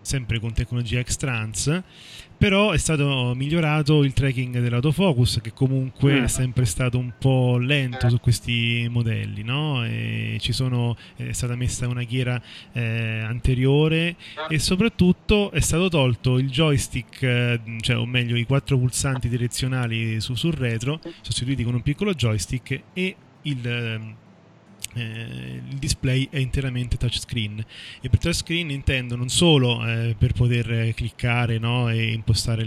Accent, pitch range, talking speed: native, 115-140 Hz, 140 wpm